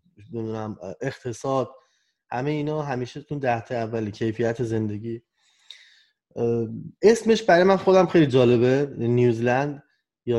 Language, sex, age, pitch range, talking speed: Persian, male, 20-39, 115-155 Hz, 100 wpm